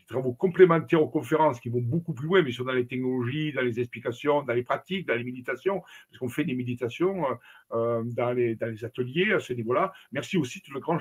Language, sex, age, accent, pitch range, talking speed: French, male, 60-79, French, 125-170 Hz, 225 wpm